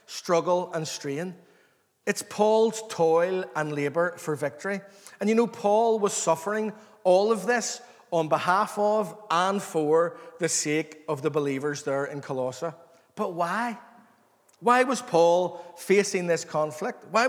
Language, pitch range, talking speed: English, 160-205 Hz, 140 wpm